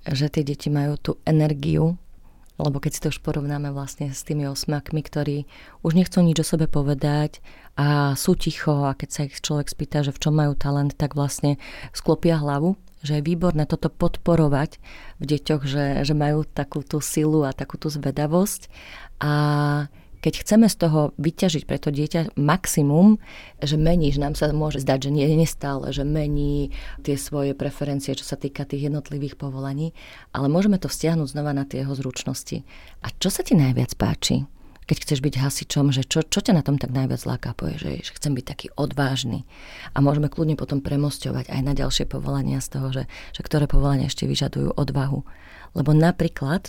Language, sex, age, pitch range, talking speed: Slovak, female, 30-49, 140-155 Hz, 185 wpm